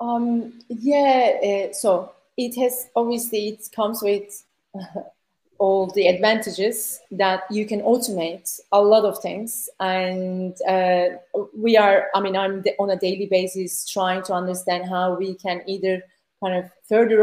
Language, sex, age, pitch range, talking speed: English, female, 30-49, 190-225 Hz, 150 wpm